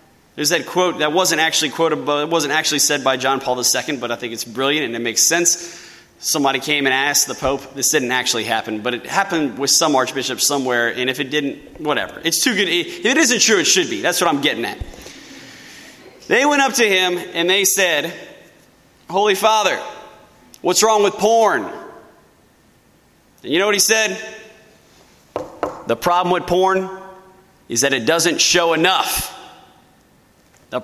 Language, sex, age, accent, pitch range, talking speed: English, male, 20-39, American, 135-190 Hz, 180 wpm